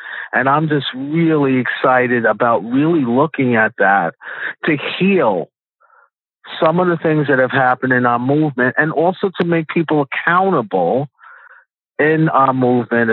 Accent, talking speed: American, 140 wpm